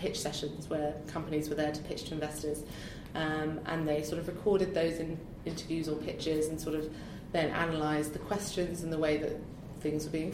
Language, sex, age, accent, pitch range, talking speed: English, female, 30-49, British, 150-165 Hz, 195 wpm